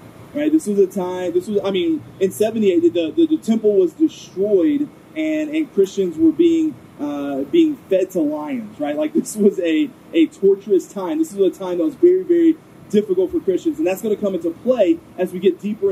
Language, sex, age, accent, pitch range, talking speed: English, male, 30-49, American, 190-315 Hz, 215 wpm